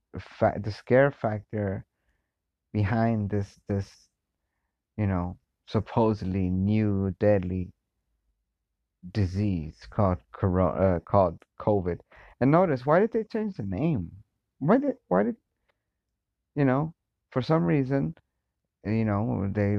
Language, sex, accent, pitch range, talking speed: English, male, American, 90-110 Hz, 115 wpm